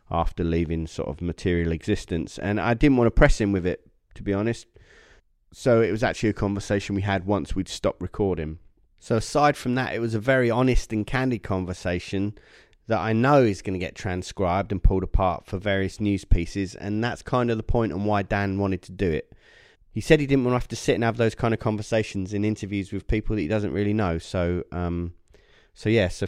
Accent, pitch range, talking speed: British, 95-115 Hz, 225 wpm